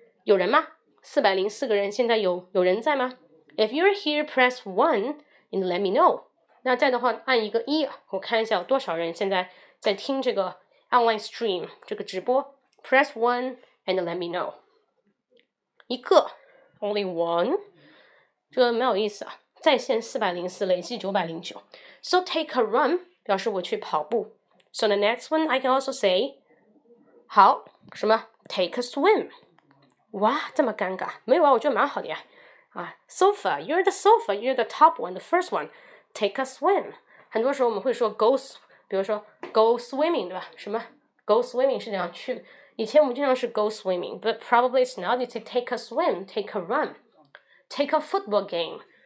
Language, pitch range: Chinese, 205-295 Hz